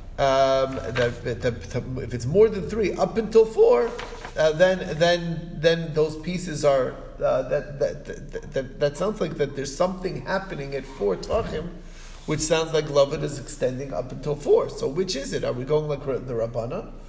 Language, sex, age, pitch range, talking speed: English, male, 40-59, 135-175 Hz, 185 wpm